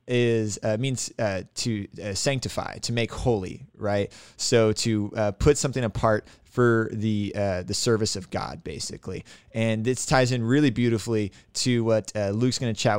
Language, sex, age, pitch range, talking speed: English, male, 20-39, 105-125 Hz, 170 wpm